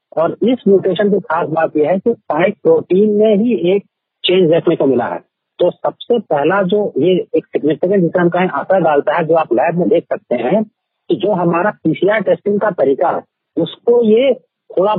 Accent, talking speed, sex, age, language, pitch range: native, 195 wpm, male, 50-69, Hindi, 155-210 Hz